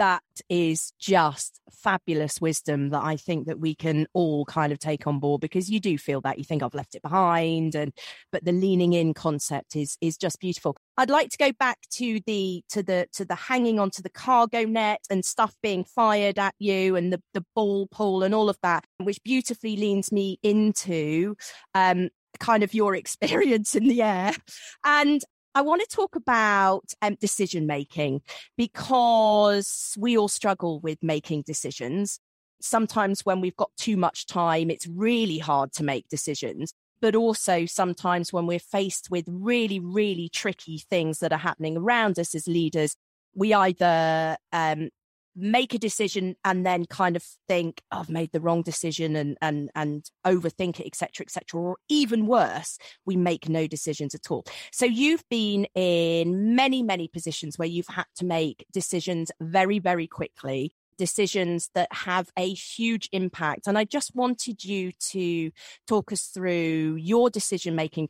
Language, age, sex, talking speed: English, 30-49, female, 170 wpm